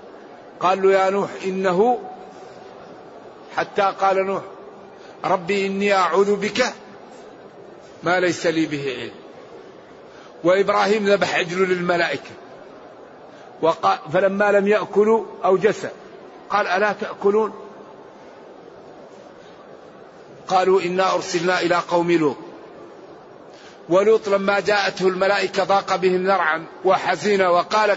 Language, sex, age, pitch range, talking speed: Arabic, male, 50-69, 185-210 Hz, 95 wpm